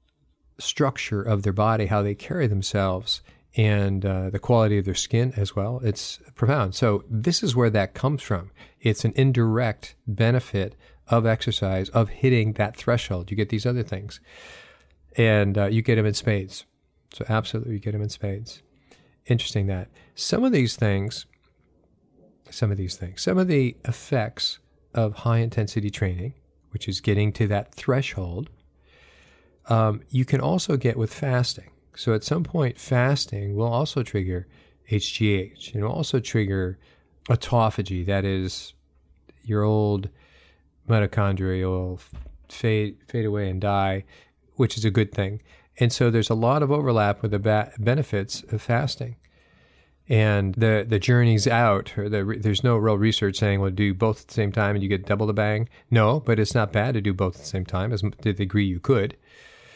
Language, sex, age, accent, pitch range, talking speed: English, male, 40-59, American, 100-120 Hz, 170 wpm